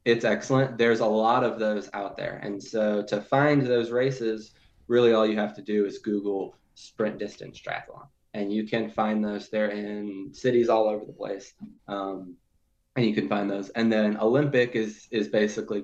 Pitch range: 100-115 Hz